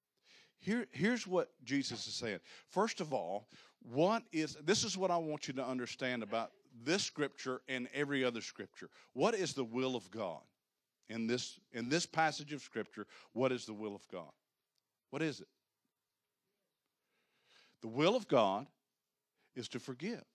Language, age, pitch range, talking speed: English, 50-69, 130-190 Hz, 160 wpm